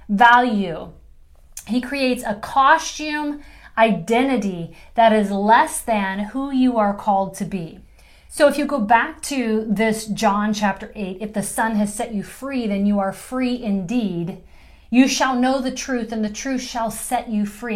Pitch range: 210-250 Hz